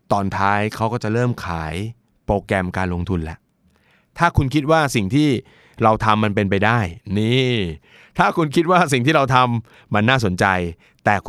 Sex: male